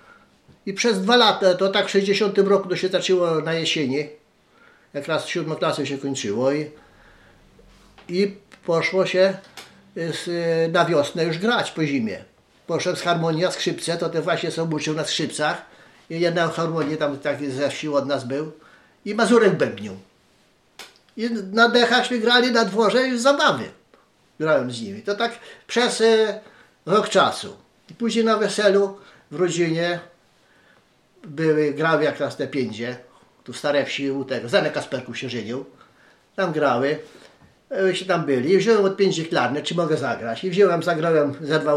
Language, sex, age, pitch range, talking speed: Polish, male, 50-69, 150-205 Hz, 160 wpm